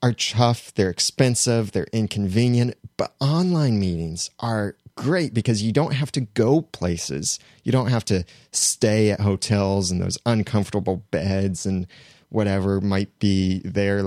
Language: English